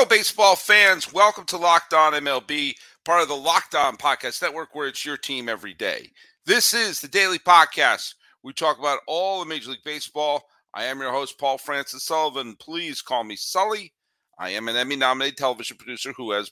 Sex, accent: male, American